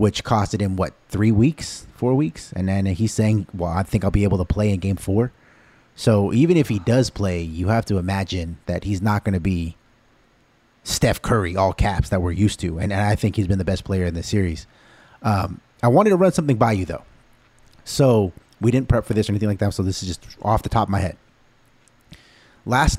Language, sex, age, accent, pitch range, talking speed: English, male, 30-49, American, 95-115 Hz, 230 wpm